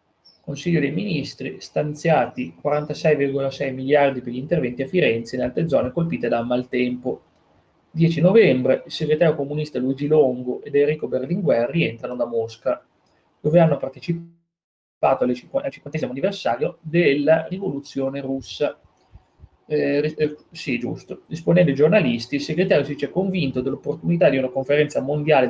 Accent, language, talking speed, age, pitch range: native, Italian, 135 wpm, 30-49, 125-165 Hz